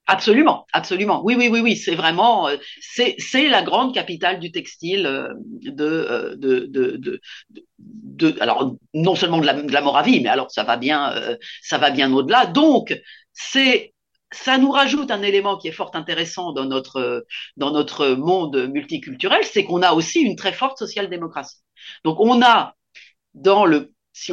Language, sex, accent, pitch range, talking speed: French, female, French, 165-255 Hz, 175 wpm